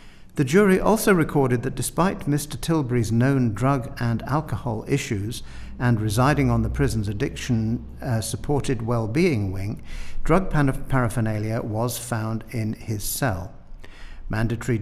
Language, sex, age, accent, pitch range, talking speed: English, male, 50-69, British, 115-145 Hz, 125 wpm